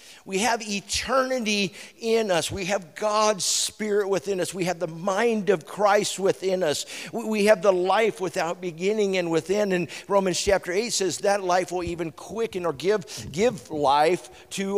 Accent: American